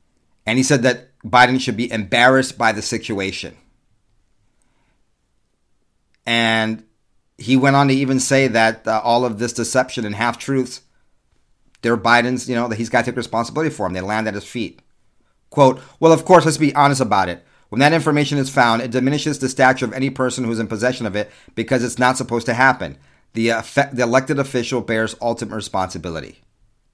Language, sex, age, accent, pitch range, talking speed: English, male, 40-59, American, 110-130 Hz, 185 wpm